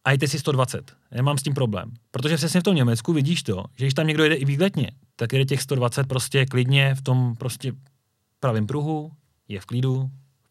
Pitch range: 115-135 Hz